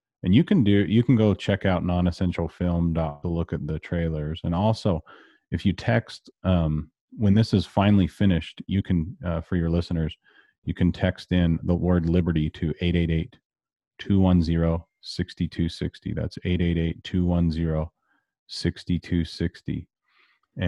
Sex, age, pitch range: male, 30-49, 80-90 Hz